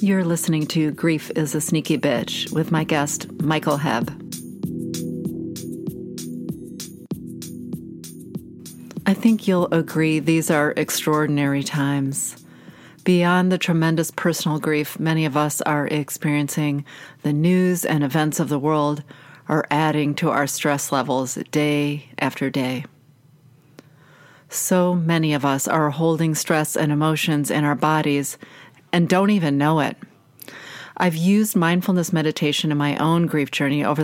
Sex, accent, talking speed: female, American, 130 wpm